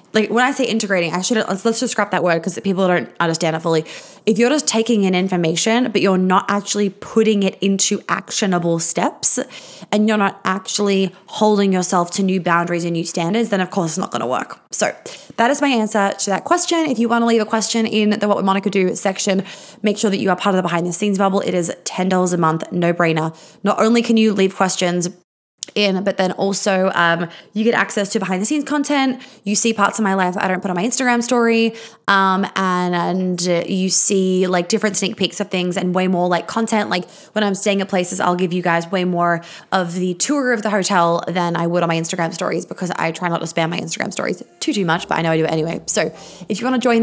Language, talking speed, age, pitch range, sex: English, 245 wpm, 20-39, 180-220 Hz, female